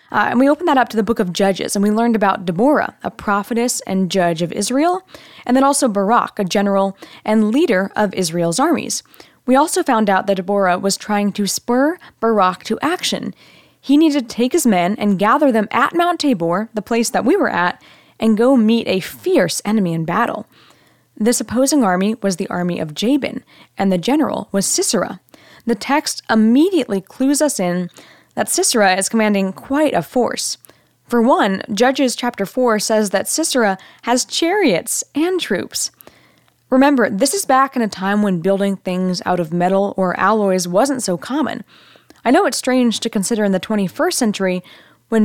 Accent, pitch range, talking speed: American, 195-265 Hz, 185 wpm